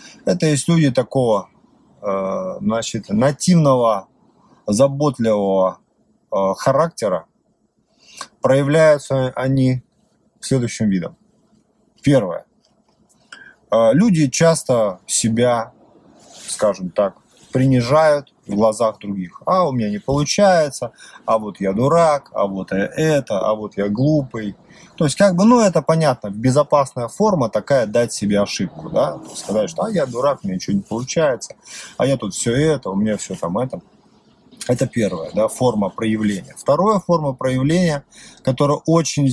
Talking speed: 125 wpm